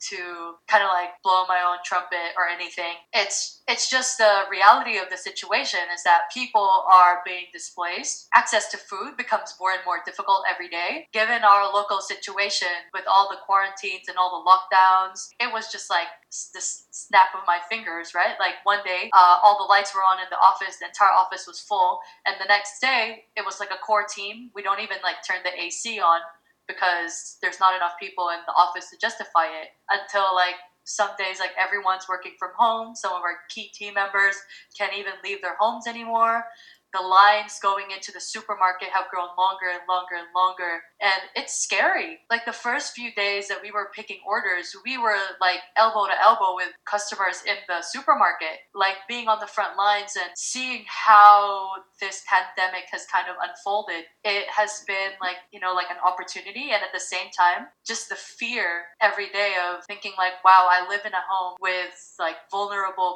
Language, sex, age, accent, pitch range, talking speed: English, female, 20-39, American, 180-205 Hz, 195 wpm